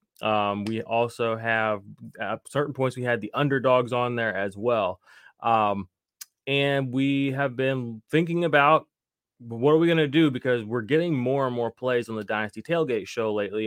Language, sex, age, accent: English, male, 20-39, American